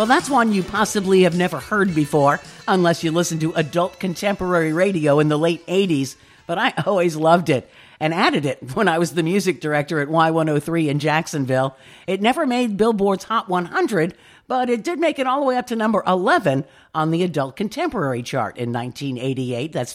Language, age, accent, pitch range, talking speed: English, 50-69, American, 150-200 Hz, 195 wpm